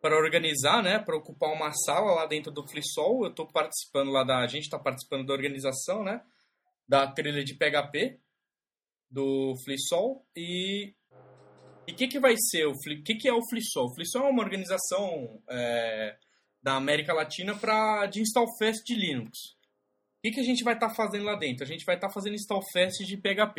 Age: 20-39